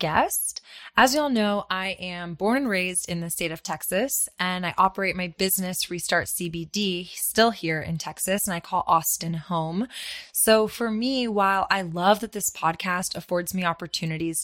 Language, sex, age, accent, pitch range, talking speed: English, female, 20-39, American, 175-215 Hz, 180 wpm